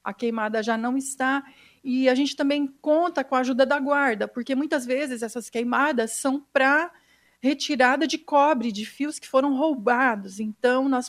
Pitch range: 245-295 Hz